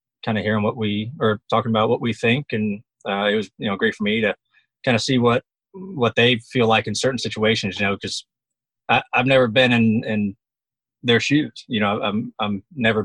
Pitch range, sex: 105-125 Hz, male